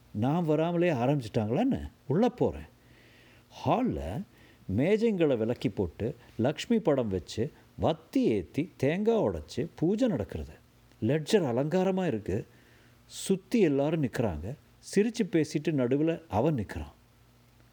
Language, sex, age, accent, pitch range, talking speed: Tamil, male, 50-69, native, 110-165 Hz, 100 wpm